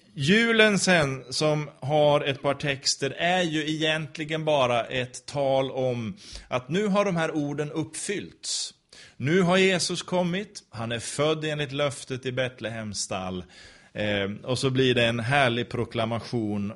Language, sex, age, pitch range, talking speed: Swedish, male, 30-49, 125-160 Hz, 145 wpm